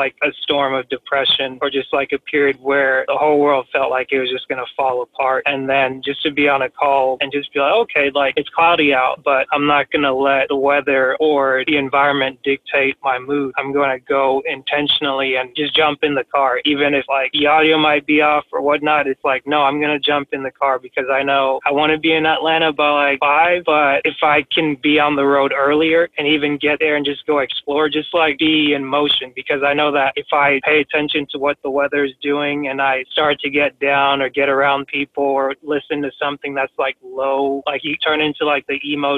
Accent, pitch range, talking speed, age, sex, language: American, 140-150 Hz, 240 wpm, 20-39, male, English